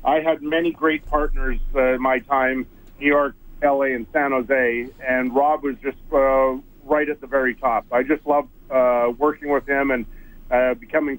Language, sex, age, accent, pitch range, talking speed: English, male, 50-69, American, 130-155 Hz, 190 wpm